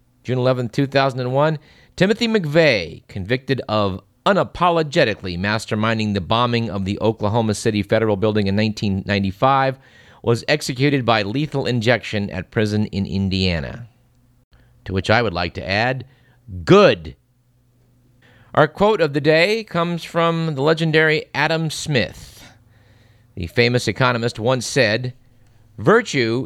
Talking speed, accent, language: 120 wpm, American, English